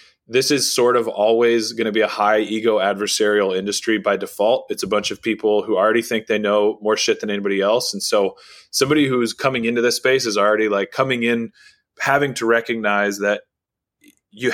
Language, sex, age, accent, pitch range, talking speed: English, male, 20-39, American, 105-120 Hz, 200 wpm